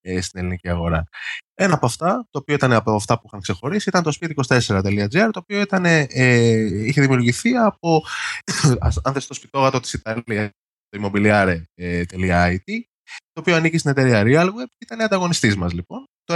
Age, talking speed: 20-39, 145 wpm